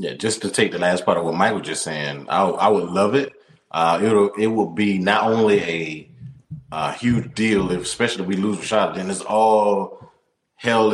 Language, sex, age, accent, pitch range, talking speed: English, male, 30-49, American, 95-115 Hz, 220 wpm